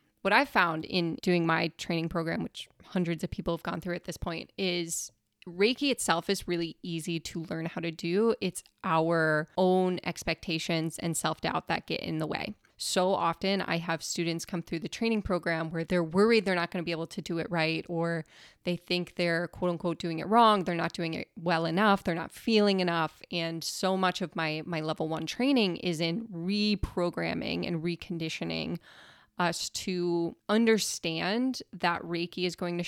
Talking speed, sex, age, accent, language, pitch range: 190 wpm, female, 20-39, American, English, 170-195 Hz